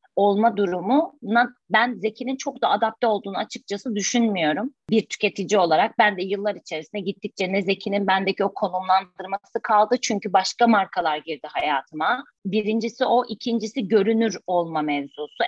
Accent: native